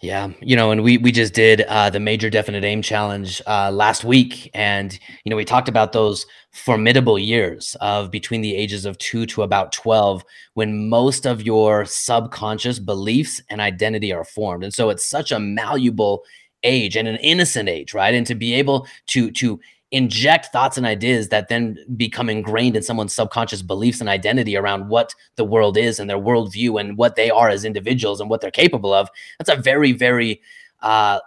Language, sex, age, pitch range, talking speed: English, male, 30-49, 105-125 Hz, 195 wpm